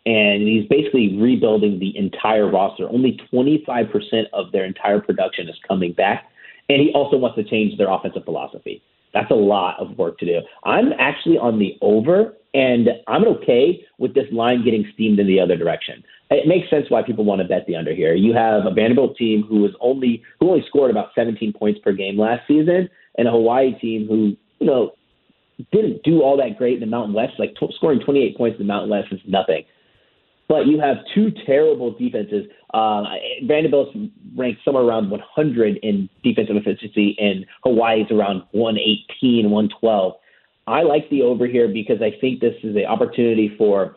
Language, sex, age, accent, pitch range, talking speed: English, male, 30-49, American, 105-140 Hz, 190 wpm